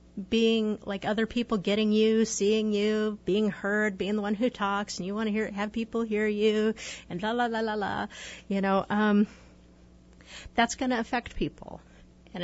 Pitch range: 185-220 Hz